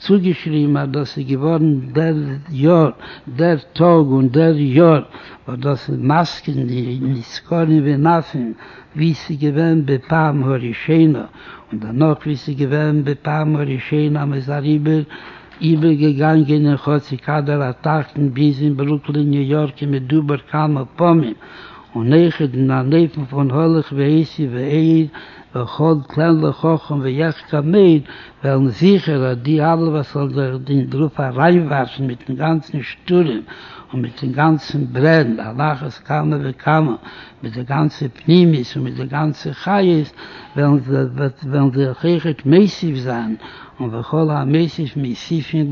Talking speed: 140 wpm